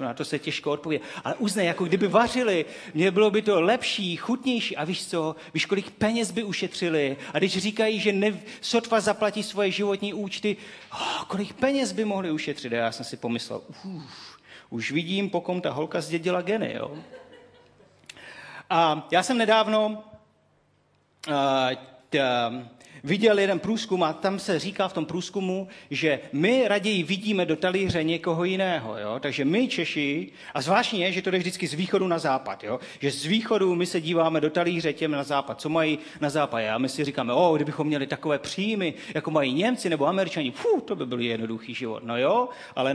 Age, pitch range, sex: 40-59, 150-210 Hz, male